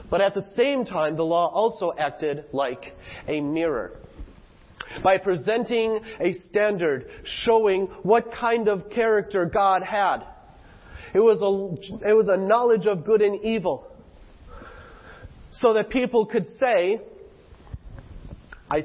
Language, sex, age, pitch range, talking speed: English, male, 40-59, 175-220 Hz, 125 wpm